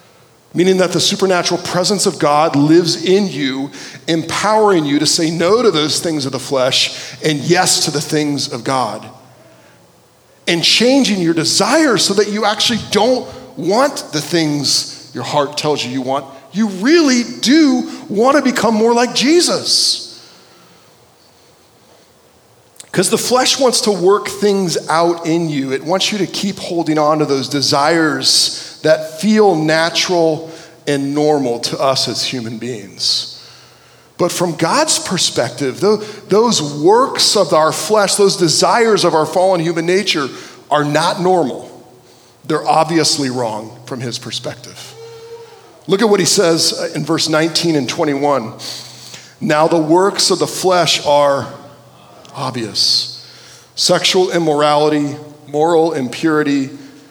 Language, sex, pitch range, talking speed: English, male, 145-195 Hz, 140 wpm